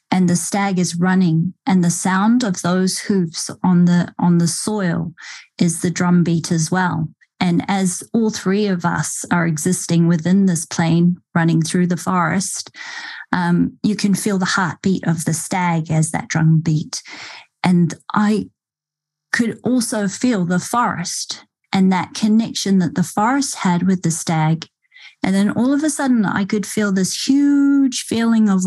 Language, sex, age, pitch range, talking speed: English, female, 30-49, 170-200 Hz, 165 wpm